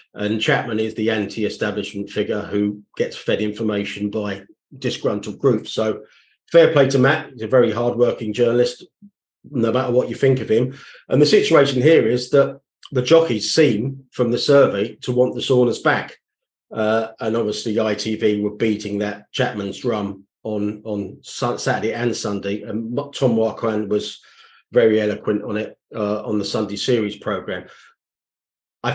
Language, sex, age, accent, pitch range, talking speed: English, male, 40-59, British, 110-130 Hz, 160 wpm